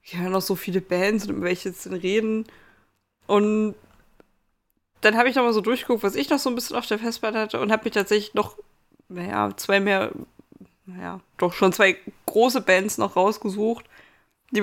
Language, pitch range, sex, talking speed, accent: German, 190-220 Hz, female, 190 wpm, German